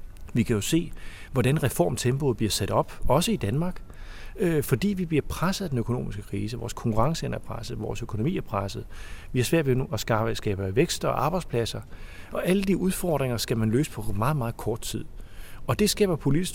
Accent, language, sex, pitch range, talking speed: native, Danish, male, 110-150 Hz, 190 wpm